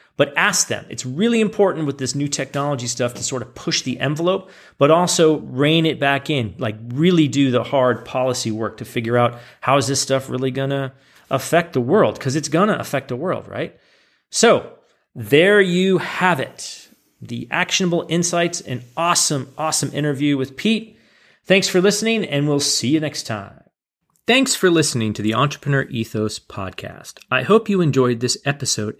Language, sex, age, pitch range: English, male, 30-49, 120-165 Hz